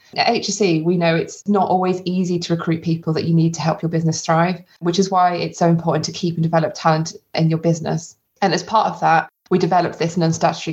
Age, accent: 20-39, British